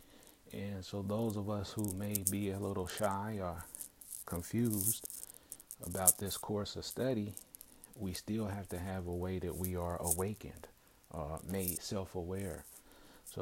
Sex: male